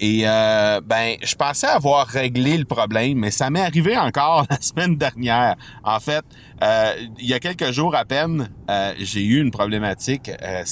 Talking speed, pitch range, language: 185 wpm, 105-135 Hz, French